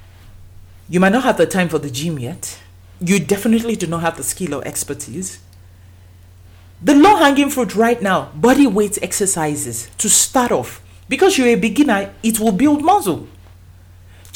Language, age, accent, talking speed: English, 40-59, Nigerian, 165 wpm